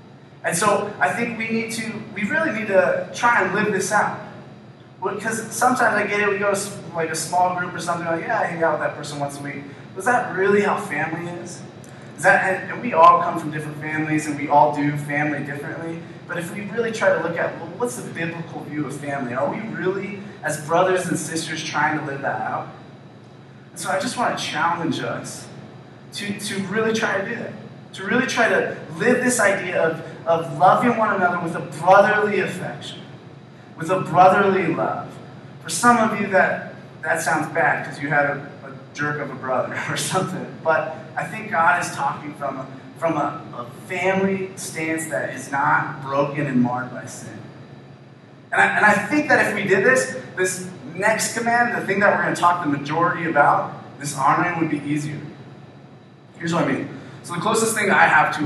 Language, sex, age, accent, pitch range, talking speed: English, male, 20-39, American, 150-200 Hz, 210 wpm